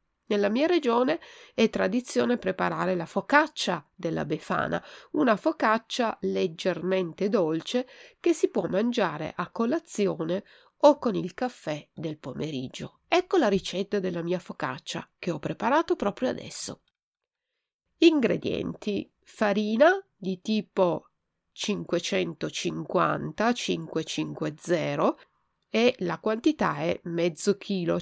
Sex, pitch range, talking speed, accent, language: female, 180-290 Hz, 105 wpm, native, Italian